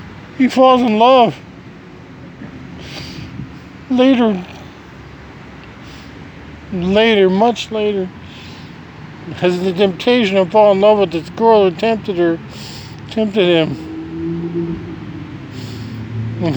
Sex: male